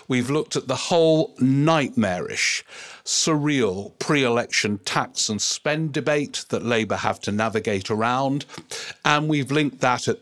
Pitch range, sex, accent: 110-135 Hz, male, British